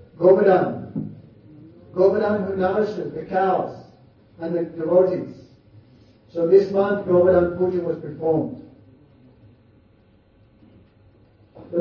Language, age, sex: Hindi, 50-69, male